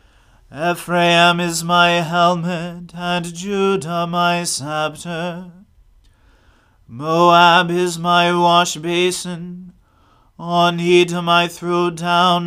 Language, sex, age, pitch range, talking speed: English, male, 30-49, 165-180 Hz, 80 wpm